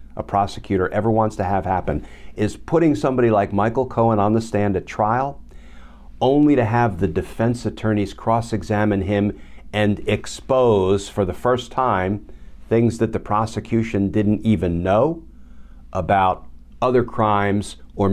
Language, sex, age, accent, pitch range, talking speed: English, male, 50-69, American, 80-110 Hz, 145 wpm